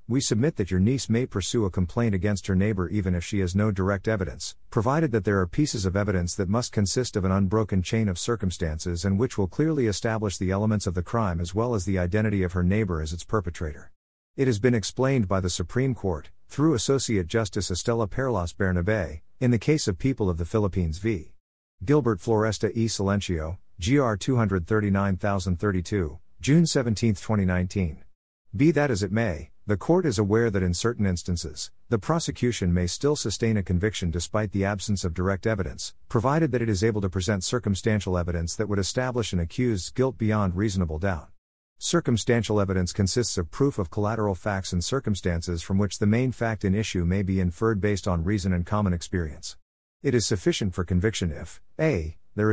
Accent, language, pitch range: American, English, 90-115 Hz